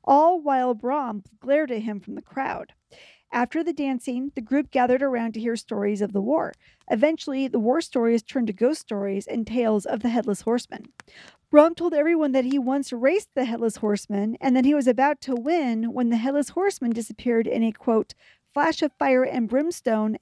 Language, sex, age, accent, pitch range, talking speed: English, female, 50-69, American, 220-275 Hz, 195 wpm